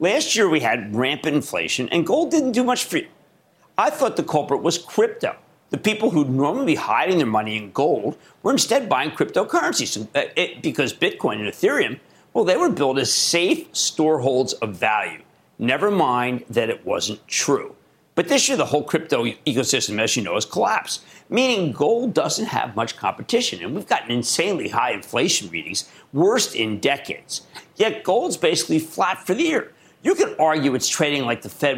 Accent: American